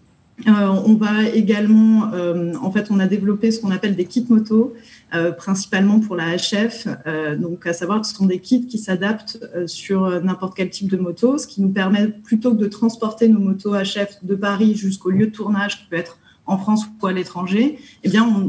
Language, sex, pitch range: French, female, 175-215 Hz